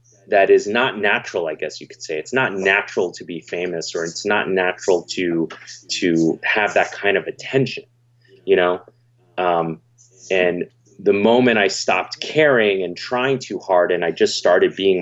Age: 30-49